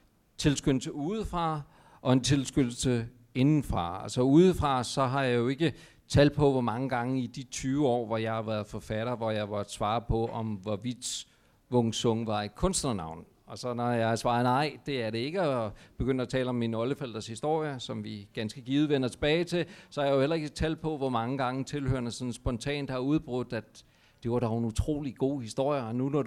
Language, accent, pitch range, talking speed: Danish, native, 115-145 Hz, 215 wpm